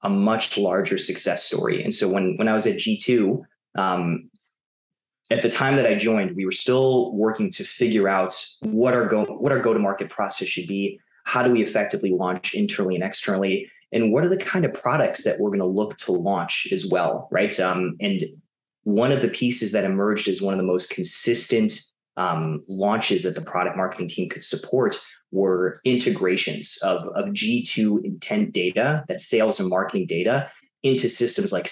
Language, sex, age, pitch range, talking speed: English, male, 30-49, 95-125 Hz, 185 wpm